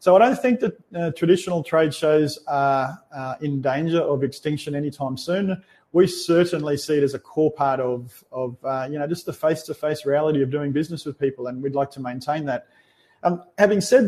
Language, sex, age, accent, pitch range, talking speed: English, male, 30-49, Australian, 135-165 Hz, 205 wpm